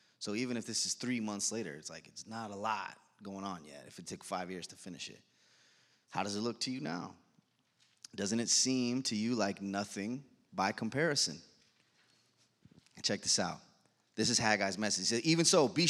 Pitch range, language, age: 130-180 Hz, English, 30-49